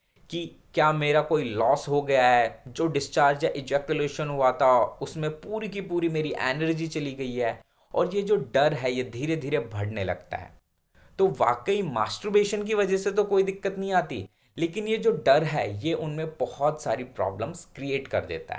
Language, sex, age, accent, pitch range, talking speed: Hindi, male, 20-39, native, 135-195 Hz, 185 wpm